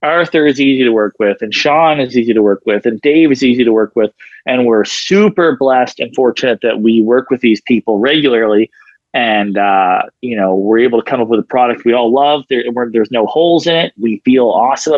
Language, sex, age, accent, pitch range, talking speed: English, male, 30-49, American, 110-130 Hz, 230 wpm